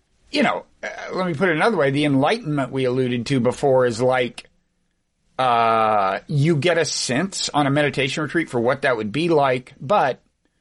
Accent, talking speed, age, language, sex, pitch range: American, 185 wpm, 50-69, English, male, 130-185 Hz